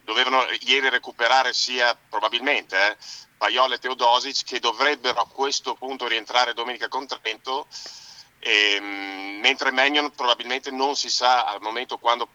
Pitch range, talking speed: 110-130 Hz, 135 wpm